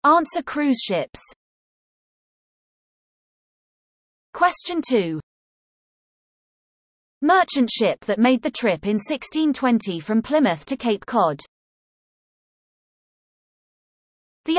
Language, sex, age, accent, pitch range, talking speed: English, female, 30-49, British, 205-295 Hz, 80 wpm